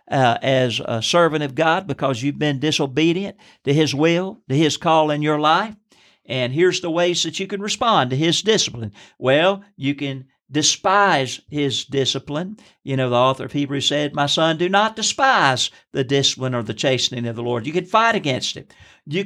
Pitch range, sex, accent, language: 135-185 Hz, male, American, English